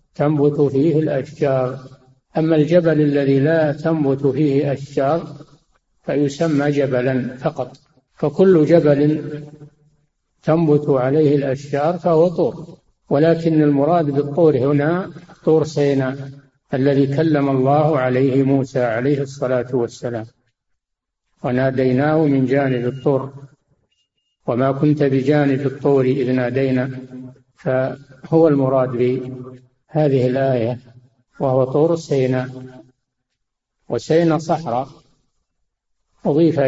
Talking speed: 90 wpm